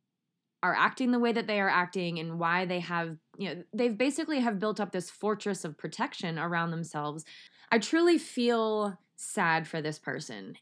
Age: 20-39